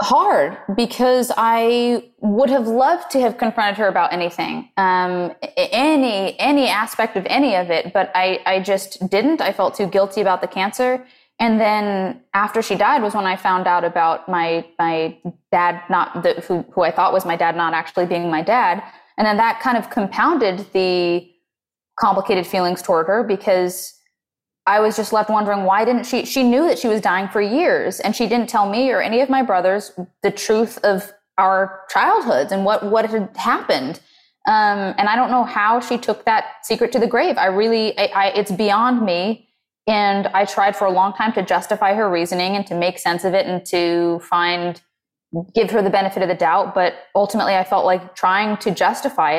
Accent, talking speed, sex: American, 200 wpm, female